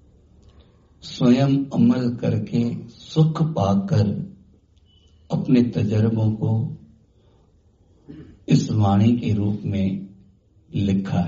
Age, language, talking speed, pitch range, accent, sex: 60-79, Hindi, 70 wpm, 100-130 Hz, native, male